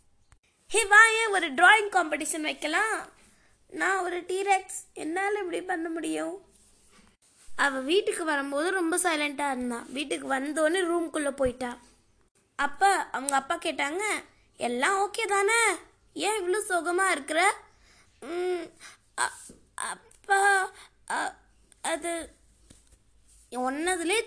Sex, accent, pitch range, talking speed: female, native, 300-385 Hz, 95 wpm